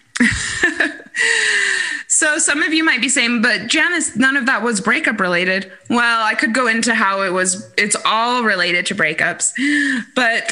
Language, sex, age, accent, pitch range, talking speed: English, female, 20-39, American, 185-270 Hz, 165 wpm